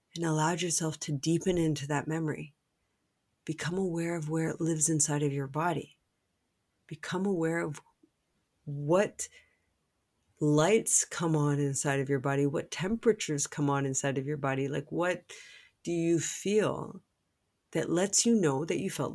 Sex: female